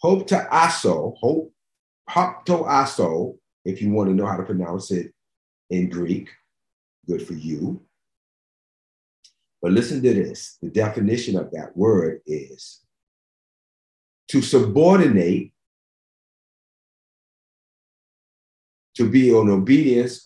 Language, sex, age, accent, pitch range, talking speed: English, male, 40-59, American, 95-160 Hz, 105 wpm